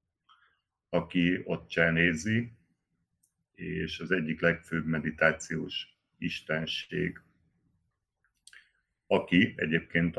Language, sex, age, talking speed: Hungarian, male, 60-79, 65 wpm